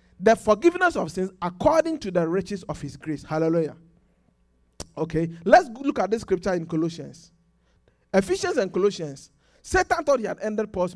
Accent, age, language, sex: Nigerian, 50-69, English, male